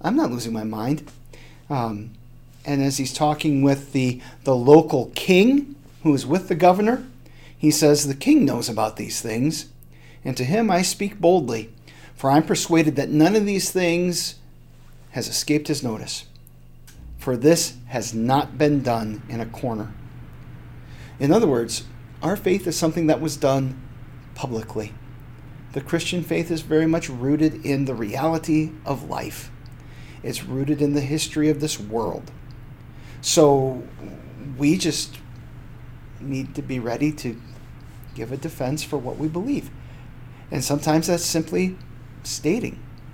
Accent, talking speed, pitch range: American, 145 wpm, 120-150 Hz